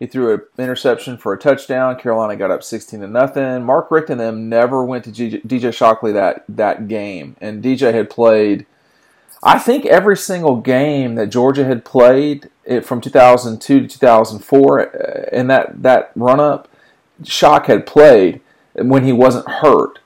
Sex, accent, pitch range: male, American, 115-145 Hz